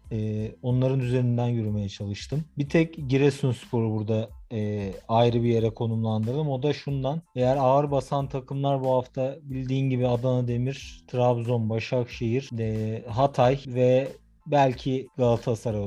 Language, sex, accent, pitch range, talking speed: Turkish, male, native, 115-135 Hz, 120 wpm